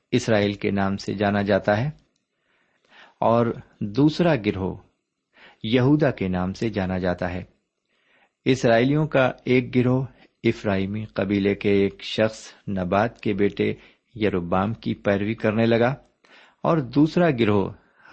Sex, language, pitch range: male, Urdu, 100-130 Hz